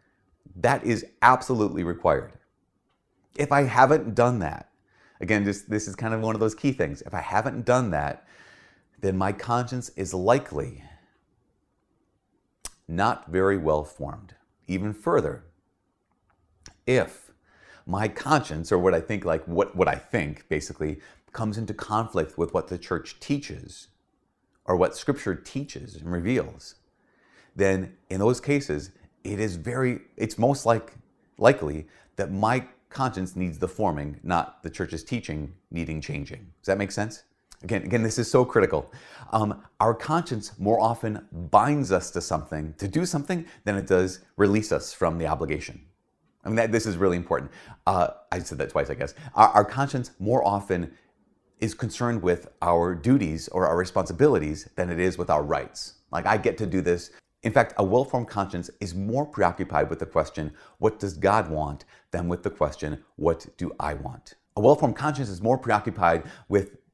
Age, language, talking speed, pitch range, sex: 30-49, English, 165 wpm, 90-115 Hz, male